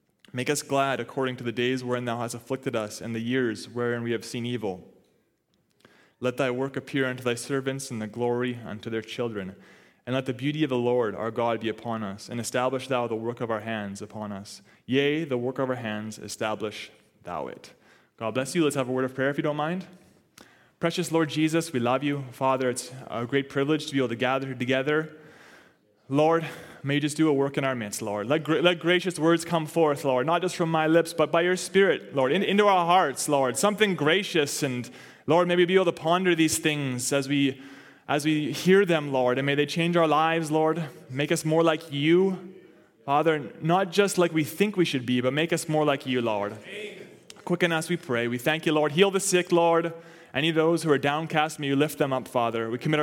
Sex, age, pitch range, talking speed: male, 20-39, 125-165 Hz, 225 wpm